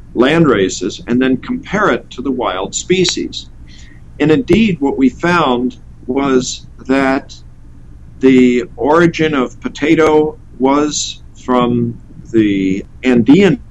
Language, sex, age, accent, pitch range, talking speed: English, male, 50-69, American, 95-145 Hz, 110 wpm